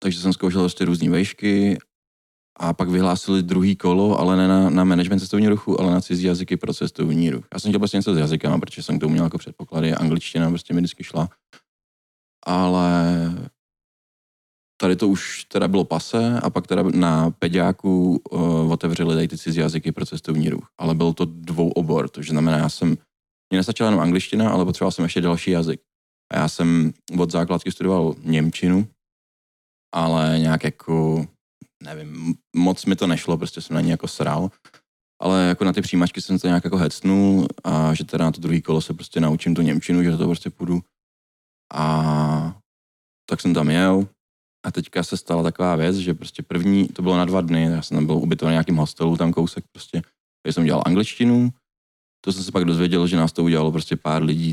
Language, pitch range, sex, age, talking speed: Czech, 80-90 Hz, male, 20-39, 195 wpm